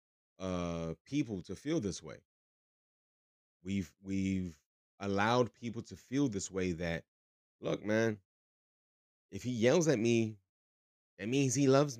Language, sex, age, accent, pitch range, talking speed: English, male, 30-49, American, 85-115 Hz, 130 wpm